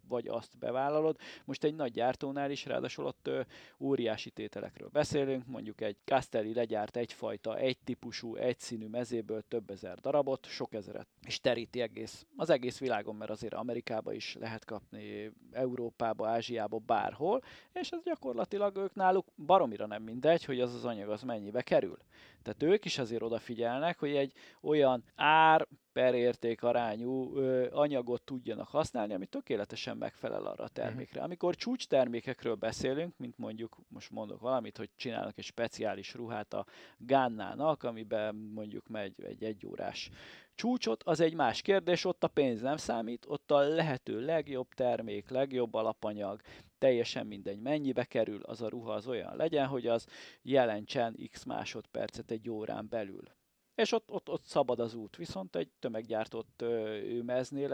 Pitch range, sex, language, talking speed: 110-145 Hz, male, Hungarian, 155 wpm